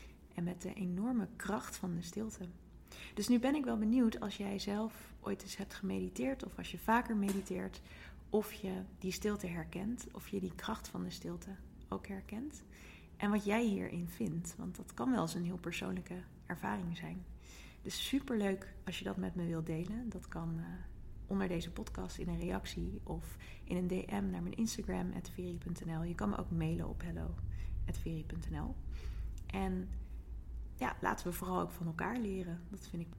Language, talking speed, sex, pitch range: Dutch, 180 wpm, female, 160-200 Hz